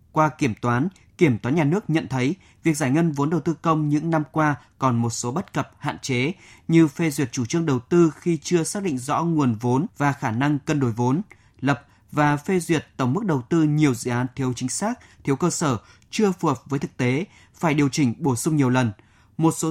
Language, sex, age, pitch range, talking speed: Vietnamese, male, 20-39, 130-165 Hz, 240 wpm